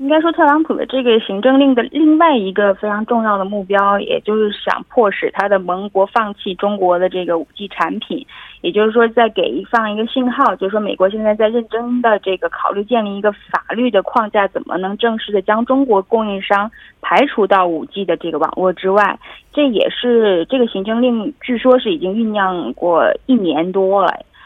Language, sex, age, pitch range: Korean, female, 20-39, 190-235 Hz